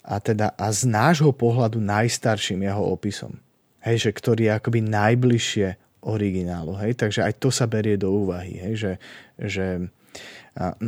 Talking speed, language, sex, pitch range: 155 wpm, Slovak, male, 100-120 Hz